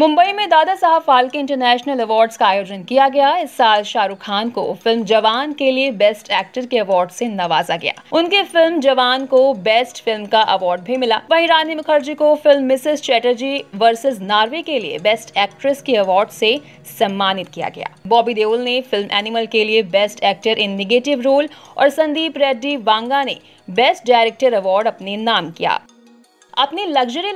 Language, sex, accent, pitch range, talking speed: Hindi, female, native, 220-285 Hz, 180 wpm